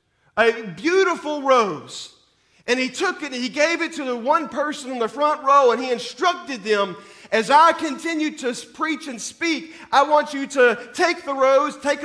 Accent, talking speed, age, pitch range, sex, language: American, 190 wpm, 40-59, 245-305 Hz, male, English